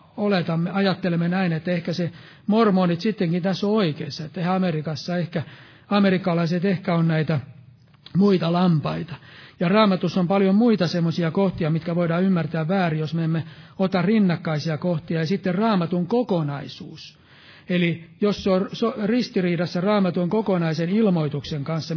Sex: male